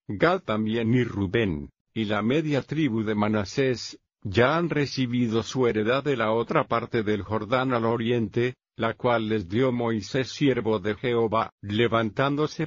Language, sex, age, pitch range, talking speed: Spanish, male, 50-69, 110-130 Hz, 150 wpm